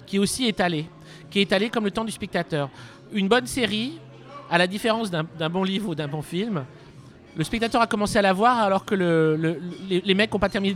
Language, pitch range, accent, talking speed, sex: French, 160-205 Hz, French, 240 wpm, male